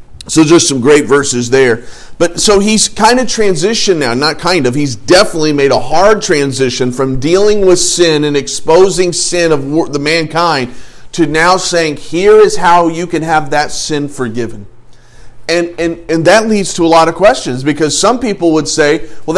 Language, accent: English, American